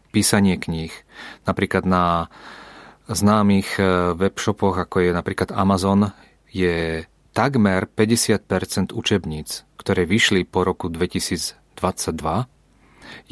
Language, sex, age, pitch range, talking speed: Czech, male, 30-49, 90-105 Hz, 90 wpm